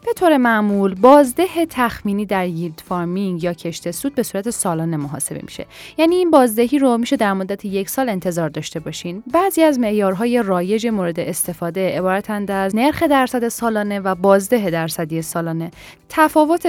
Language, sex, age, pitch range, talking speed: Persian, female, 10-29, 180-260 Hz, 160 wpm